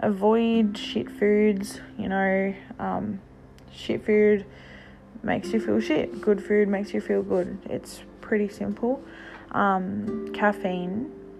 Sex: female